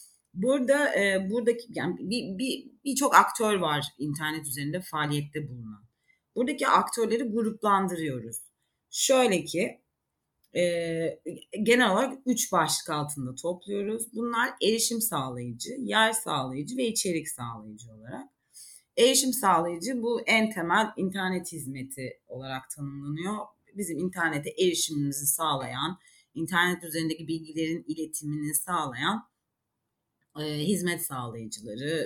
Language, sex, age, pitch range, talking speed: Turkish, female, 30-49, 145-220 Hz, 100 wpm